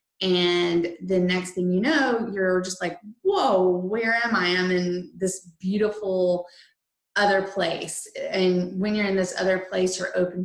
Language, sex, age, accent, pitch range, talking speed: English, female, 20-39, American, 180-215 Hz, 160 wpm